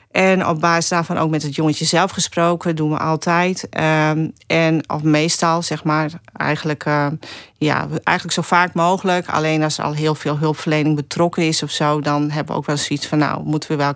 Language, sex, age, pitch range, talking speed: Dutch, female, 40-59, 145-170 Hz, 210 wpm